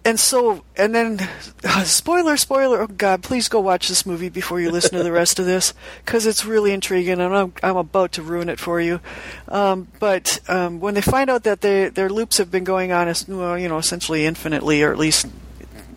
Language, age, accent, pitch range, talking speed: English, 50-69, American, 180-225 Hz, 210 wpm